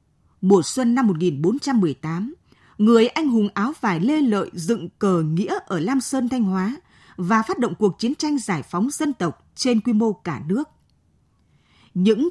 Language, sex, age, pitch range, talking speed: Vietnamese, female, 20-39, 185-270 Hz, 170 wpm